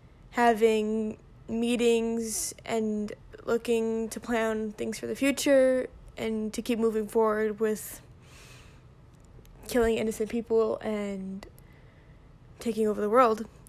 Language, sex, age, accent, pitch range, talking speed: English, female, 10-29, American, 215-235 Hz, 105 wpm